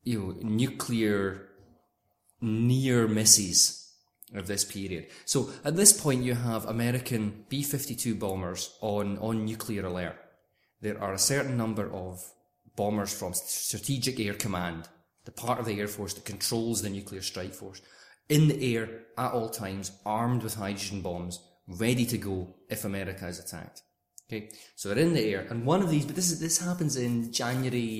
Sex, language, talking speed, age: male, English, 175 wpm, 20-39